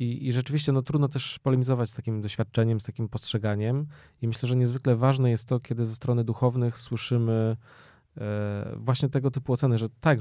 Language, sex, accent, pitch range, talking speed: Polish, male, native, 110-130 Hz, 170 wpm